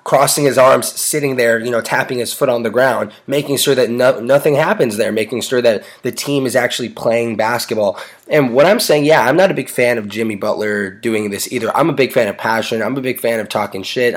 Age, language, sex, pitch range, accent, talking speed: 20-39, English, male, 110-135 Hz, American, 240 wpm